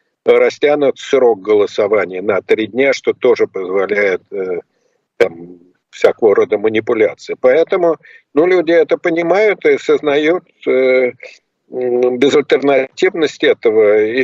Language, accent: Russian, native